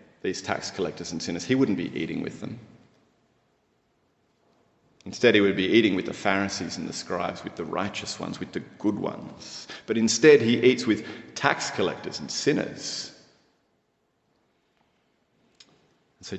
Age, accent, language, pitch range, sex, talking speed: 30-49, Australian, English, 105-125 Hz, male, 145 wpm